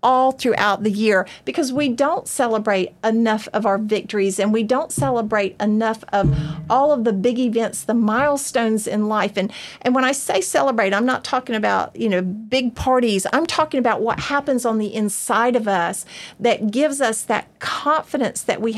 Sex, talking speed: female, 185 wpm